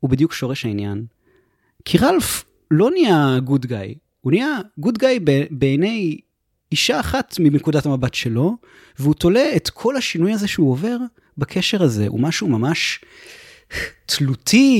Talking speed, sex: 140 wpm, male